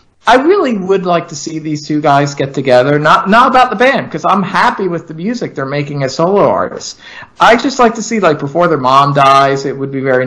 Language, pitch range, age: English, 125-175 Hz, 40-59